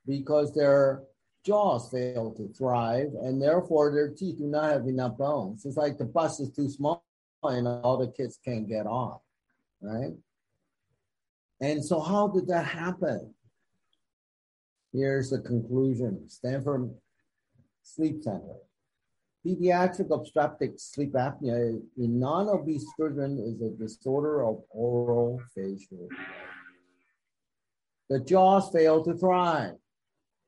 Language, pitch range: English, 120-155 Hz